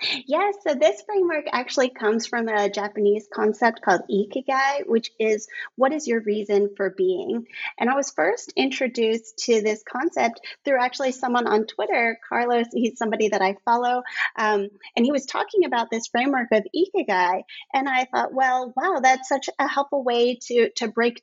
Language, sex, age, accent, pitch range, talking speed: English, female, 30-49, American, 210-270 Hz, 175 wpm